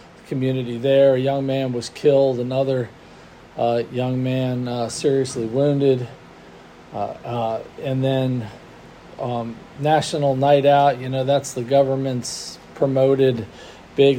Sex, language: male, English